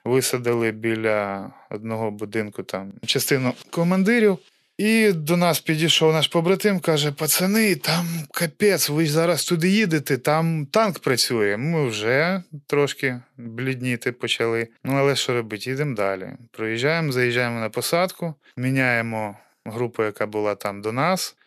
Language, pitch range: Ukrainian, 115-165 Hz